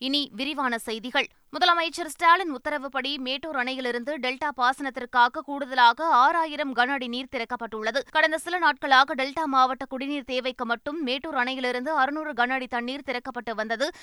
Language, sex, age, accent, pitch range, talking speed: Tamil, female, 20-39, native, 250-295 Hz, 135 wpm